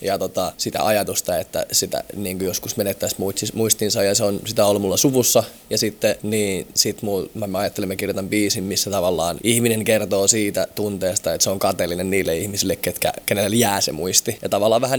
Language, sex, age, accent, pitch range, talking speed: Finnish, male, 20-39, native, 95-110 Hz, 190 wpm